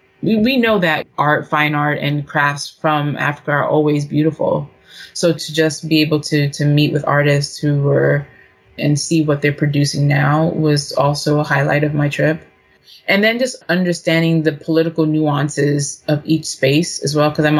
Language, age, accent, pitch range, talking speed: English, 20-39, American, 145-160 Hz, 175 wpm